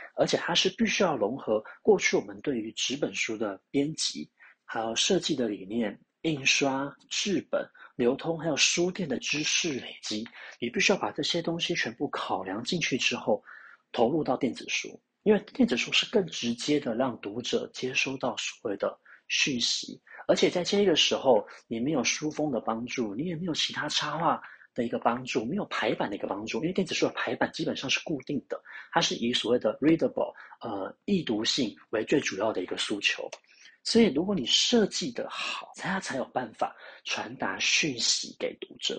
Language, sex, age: Chinese, male, 30-49